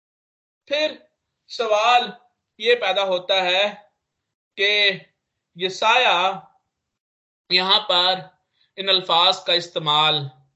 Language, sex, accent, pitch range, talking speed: Hindi, male, native, 160-235 Hz, 85 wpm